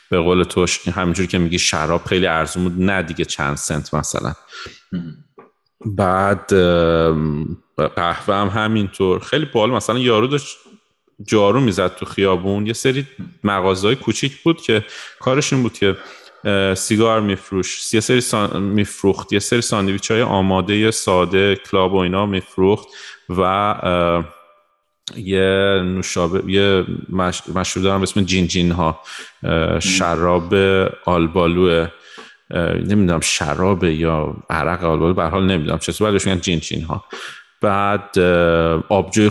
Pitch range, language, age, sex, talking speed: 90-115 Hz, Persian, 30-49, male, 120 wpm